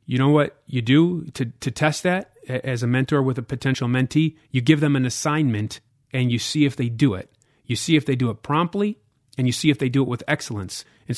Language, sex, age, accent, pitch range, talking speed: English, male, 30-49, American, 125-155 Hz, 240 wpm